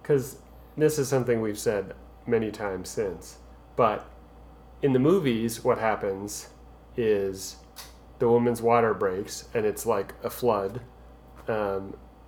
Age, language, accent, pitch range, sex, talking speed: 30-49, English, American, 100-125 Hz, male, 125 wpm